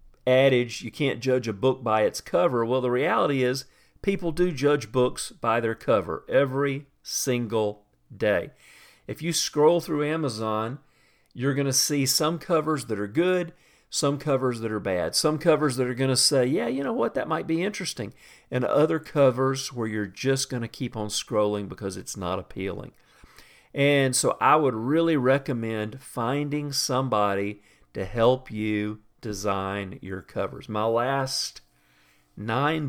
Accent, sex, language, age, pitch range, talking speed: American, male, English, 50-69, 110-140 Hz, 160 wpm